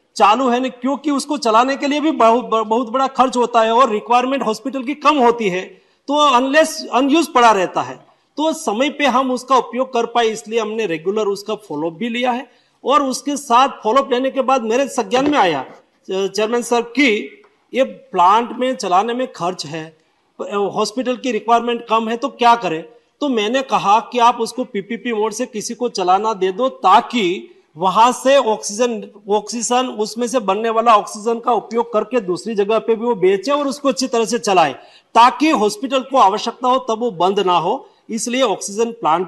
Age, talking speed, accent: 40-59, 195 wpm, native